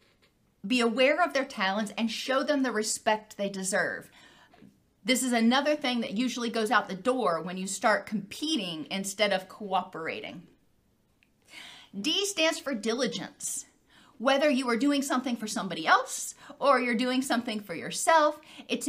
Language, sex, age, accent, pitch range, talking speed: English, female, 40-59, American, 205-255 Hz, 155 wpm